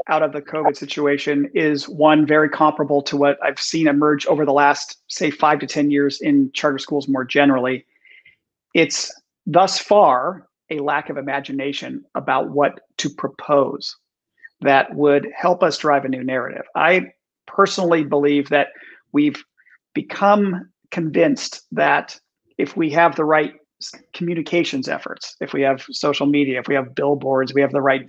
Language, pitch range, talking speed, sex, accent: English, 145-190 Hz, 160 wpm, male, American